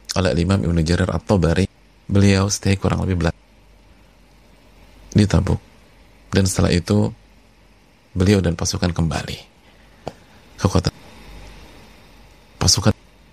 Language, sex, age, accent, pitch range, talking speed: Indonesian, male, 30-49, native, 85-105 Hz, 100 wpm